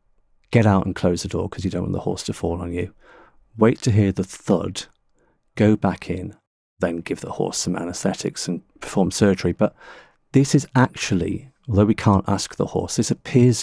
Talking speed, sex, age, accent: 200 wpm, male, 40-59, British